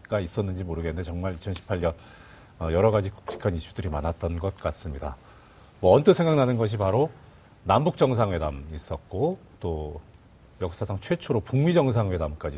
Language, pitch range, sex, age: Korean, 85-125 Hz, male, 40-59